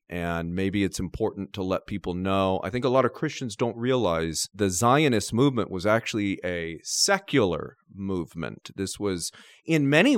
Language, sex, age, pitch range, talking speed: English, male, 40-59, 95-120 Hz, 165 wpm